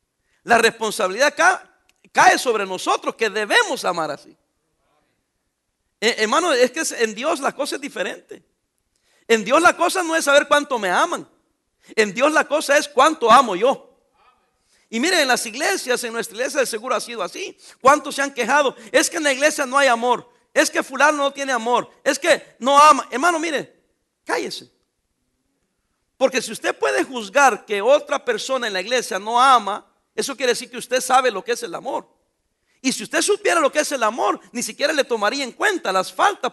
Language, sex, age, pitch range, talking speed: English, male, 50-69, 240-300 Hz, 185 wpm